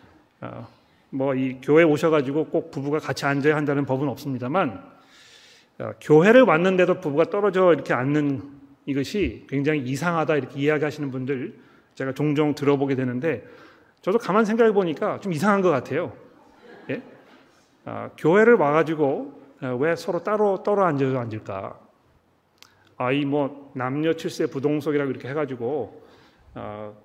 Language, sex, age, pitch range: Korean, male, 40-59, 140-180 Hz